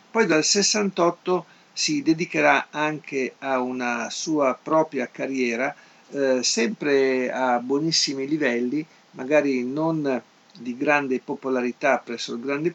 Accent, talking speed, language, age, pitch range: native, 115 wpm, Italian, 50-69, 125-160 Hz